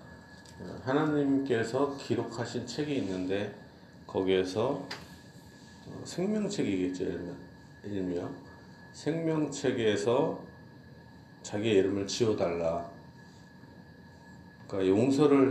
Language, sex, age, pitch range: Korean, male, 40-59, 95-135 Hz